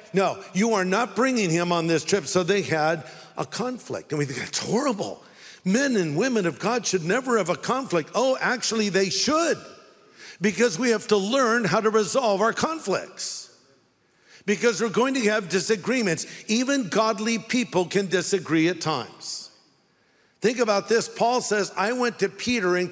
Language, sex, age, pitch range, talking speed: English, male, 60-79, 170-225 Hz, 175 wpm